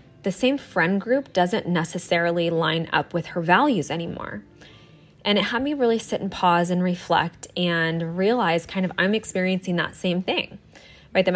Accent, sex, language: American, female, English